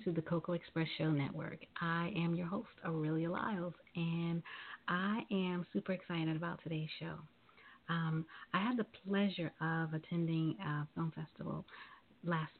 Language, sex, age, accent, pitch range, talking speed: English, female, 40-59, American, 160-185 Hz, 150 wpm